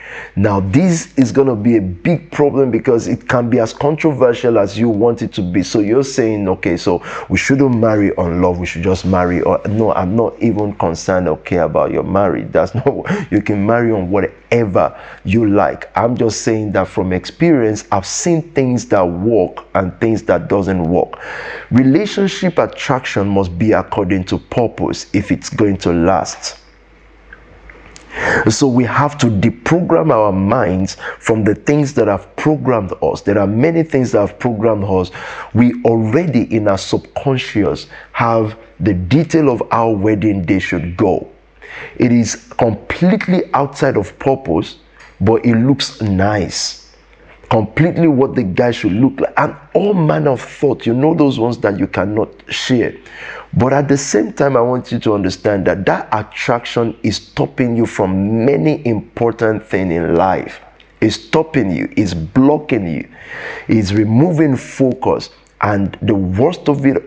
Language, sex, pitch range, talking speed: English, male, 100-135 Hz, 165 wpm